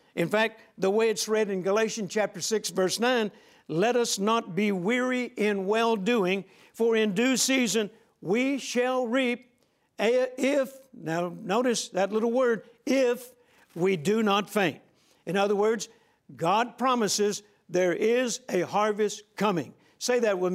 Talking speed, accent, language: 145 wpm, American, English